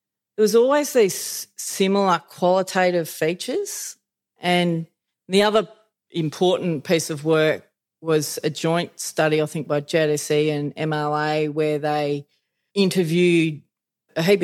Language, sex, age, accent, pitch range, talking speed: English, female, 40-59, Australian, 150-175 Hz, 120 wpm